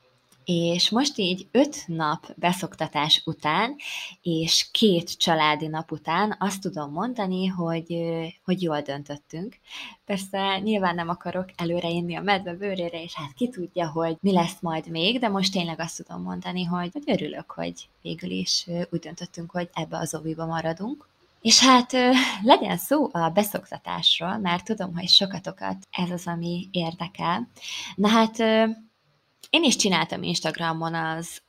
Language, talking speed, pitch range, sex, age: Hungarian, 145 wpm, 165-205 Hz, female, 20-39